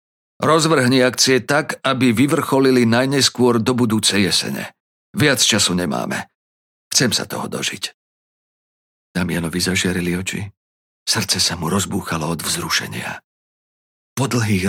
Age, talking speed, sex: 50-69, 110 wpm, male